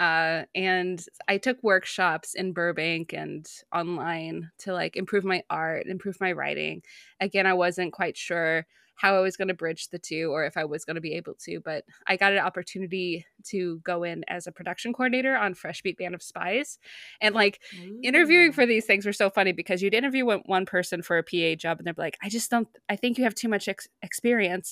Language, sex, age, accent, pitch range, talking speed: English, female, 20-39, American, 170-205 Hz, 215 wpm